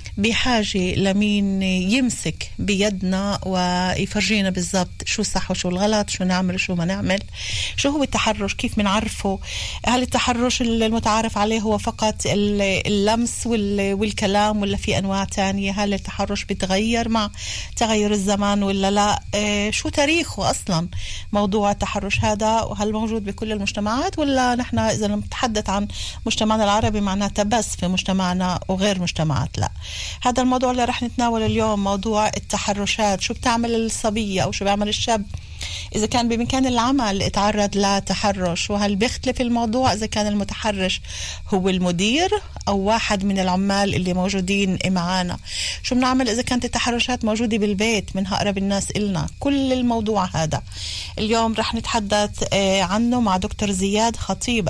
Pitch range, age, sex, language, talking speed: 190-225 Hz, 40-59, female, Hebrew, 135 wpm